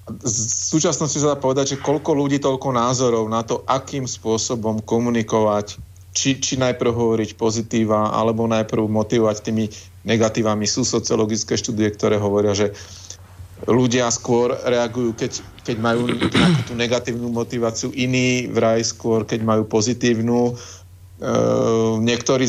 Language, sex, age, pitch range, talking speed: Slovak, male, 40-59, 100-125 Hz, 130 wpm